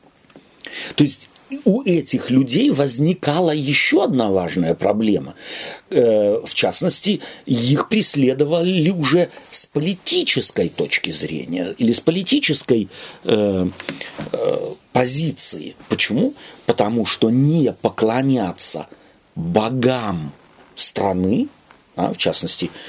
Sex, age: male, 40-59